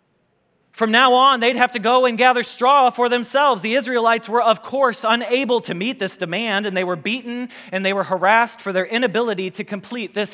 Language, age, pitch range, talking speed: English, 30-49, 205-255 Hz, 210 wpm